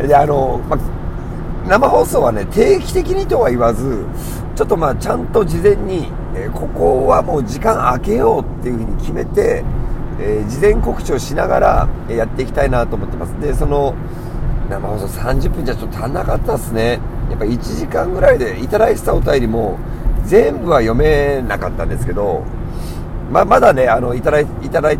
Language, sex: Japanese, male